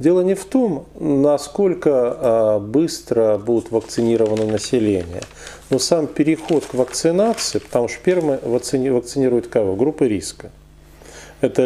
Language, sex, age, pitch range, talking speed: Russian, male, 40-59, 110-165 Hz, 115 wpm